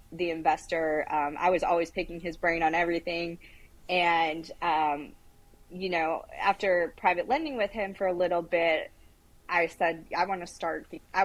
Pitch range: 170-205 Hz